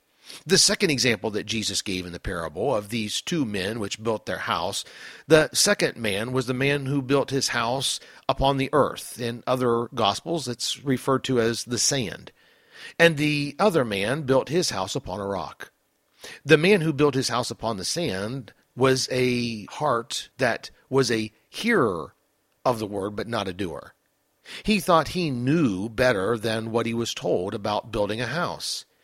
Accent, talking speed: American, 180 wpm